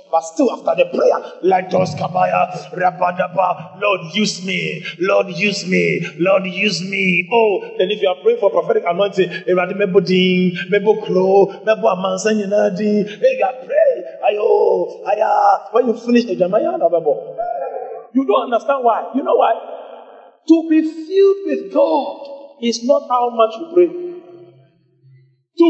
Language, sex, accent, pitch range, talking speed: English, male, Nigerian, 180-295 Hz, 145 wpm